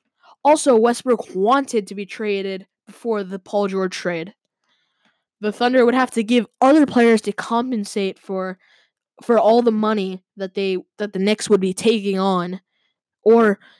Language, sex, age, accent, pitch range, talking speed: English, female, 10-29, American, 200-250 Hz, 155 wpm